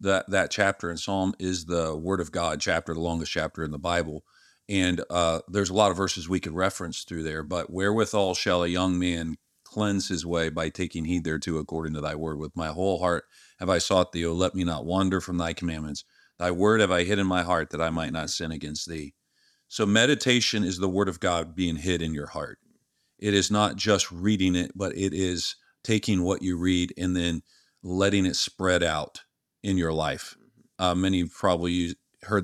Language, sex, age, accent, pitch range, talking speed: English, male, 40-59, American, 85-95 Hz, 215 wpm